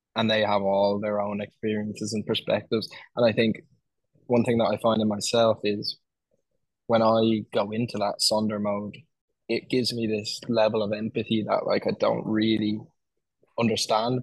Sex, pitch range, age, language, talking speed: male, 105-115 Hz, 10-29, English, 170 wpm